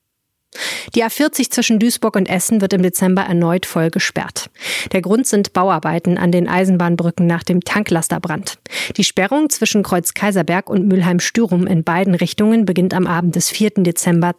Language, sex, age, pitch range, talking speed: German, female, 30-49, 175-205 Hz, 165 wpm